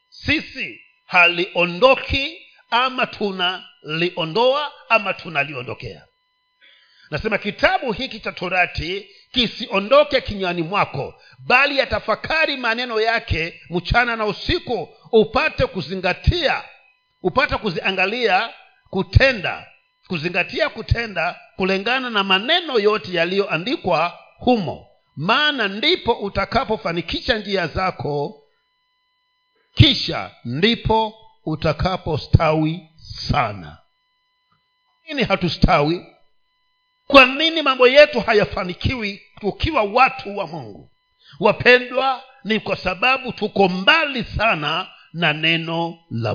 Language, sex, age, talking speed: Swahili, male, 50-69, 85 wpm